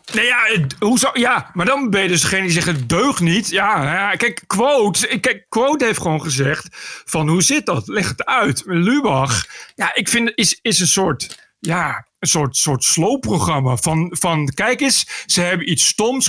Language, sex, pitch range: Dutch, male, 155-220 Hz